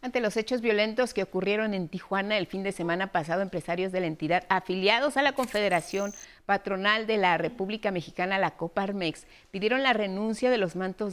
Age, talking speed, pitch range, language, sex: 40-59, 185 wpm, 180-240 Hz, Spanish, female